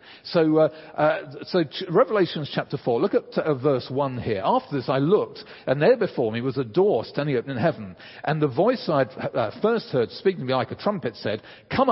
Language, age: English, 50-69